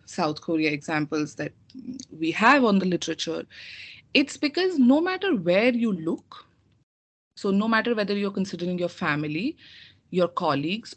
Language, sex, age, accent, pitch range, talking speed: English, female, 30-49, Indian, 170-235 Hz, 140 wpm